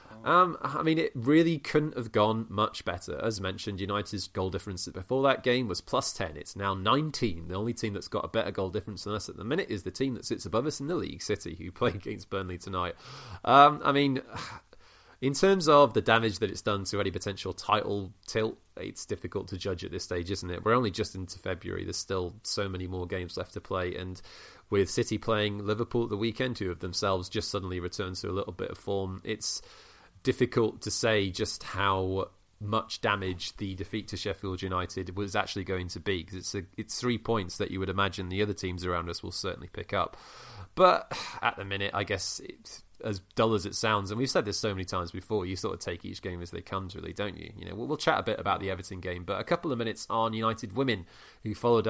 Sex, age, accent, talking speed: male, 30-49, British, 235 wpm